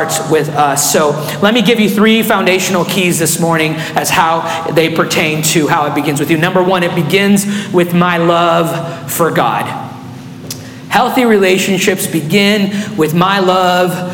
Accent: American